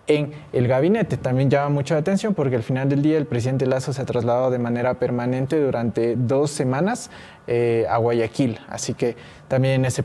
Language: English